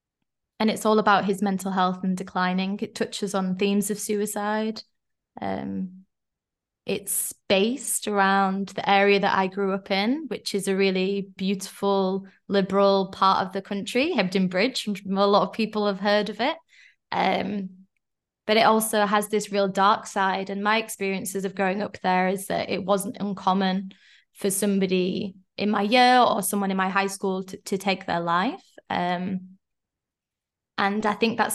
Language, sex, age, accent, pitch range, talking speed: English, female, 20-39, British, 190-210 Hz, 165 wpm